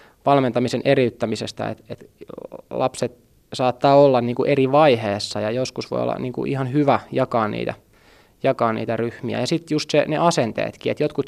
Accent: native